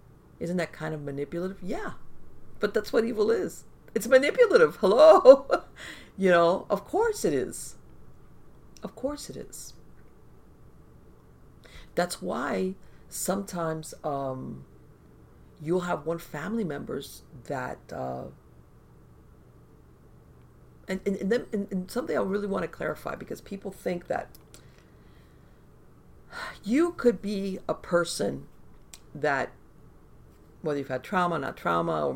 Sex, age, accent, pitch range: female, 50-69, American, 135-200 Hz